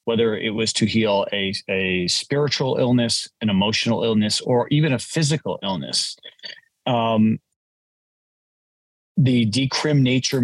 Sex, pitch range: male, 105-130 Hz